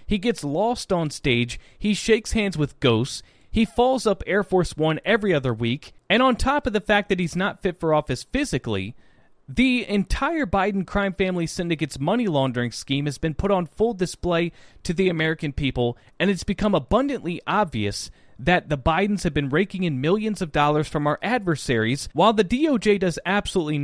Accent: American